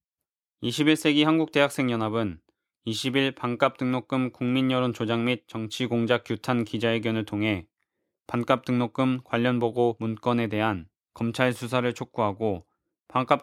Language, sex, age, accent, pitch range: Korean, male, 20-39, native, 115-130 Hz